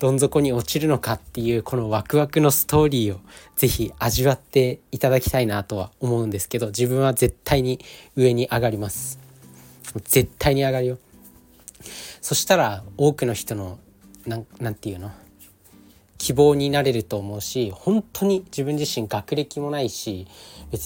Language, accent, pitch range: Japanese, native, 105-145 Hz